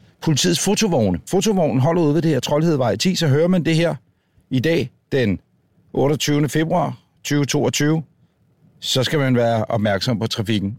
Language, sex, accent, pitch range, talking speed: Danish, male, native, 115-160 Hz, 155 wpm